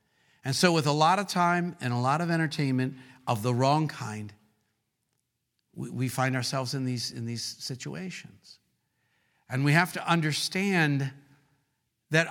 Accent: American